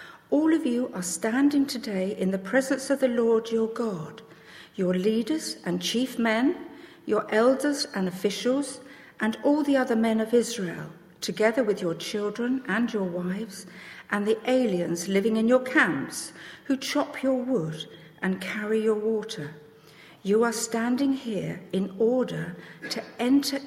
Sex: female